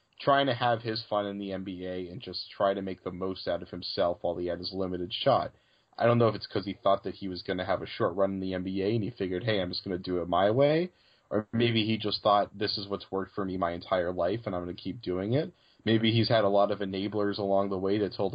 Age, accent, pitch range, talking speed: 20-39, American, 95-115 Hz, 290 wpm